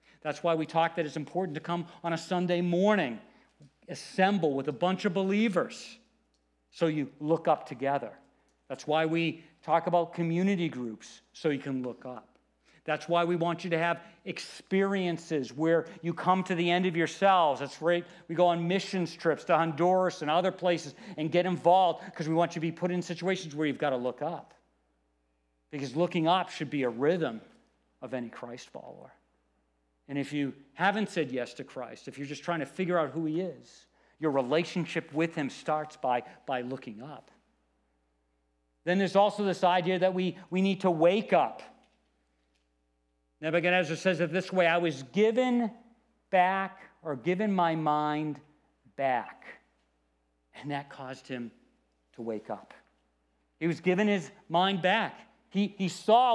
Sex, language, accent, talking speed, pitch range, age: male, English, American, 170 wpm, 135-185 Hz, 50-69